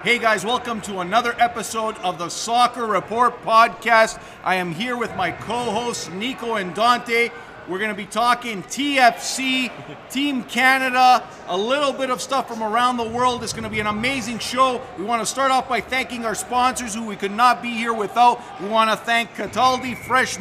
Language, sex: English, male